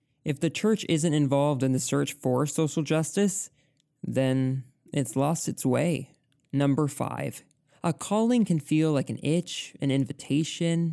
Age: 20-39